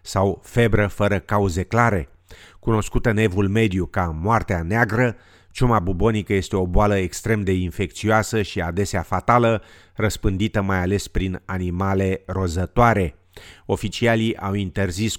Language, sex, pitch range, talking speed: Romanian, male, 90-110 Hz, 125 wpm